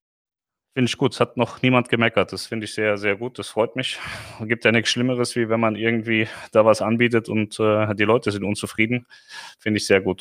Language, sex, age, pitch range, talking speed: German, male, 30-49, 105-120 Hz, 230 wpm